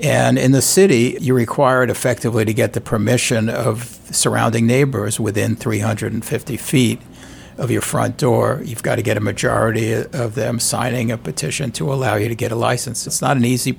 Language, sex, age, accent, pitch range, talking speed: English, male, 60-79, American, 115-130 Hz, 185 wpm